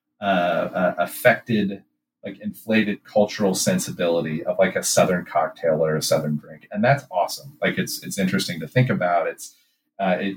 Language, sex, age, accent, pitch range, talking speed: English, male, 30-49, American, 90-110 Hz, 170 wpm